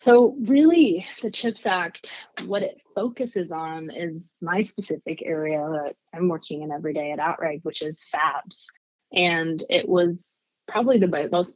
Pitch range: 150-195 Hz